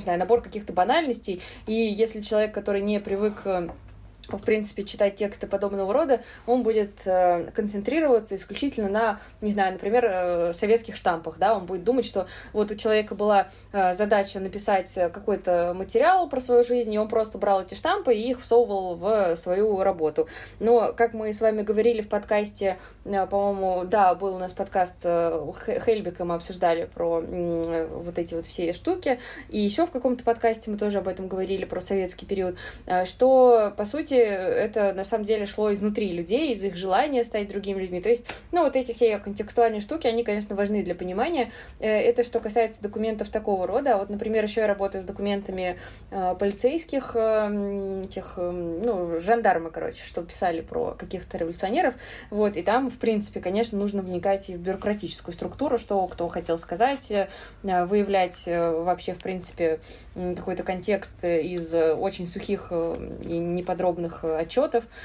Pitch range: 180-220 Hz